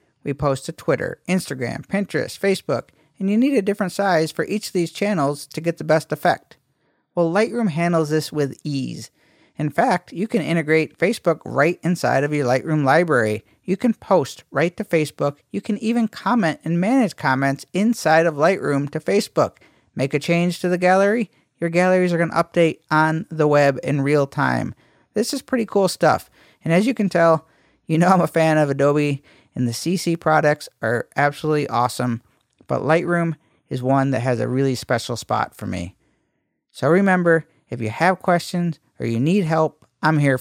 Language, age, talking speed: English, 50-69, 185 wpm